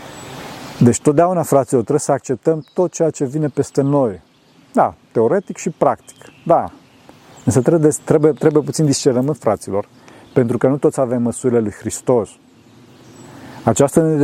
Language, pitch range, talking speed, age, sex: Romanian, 115-150 Hz, 135 wpm, 40-59, male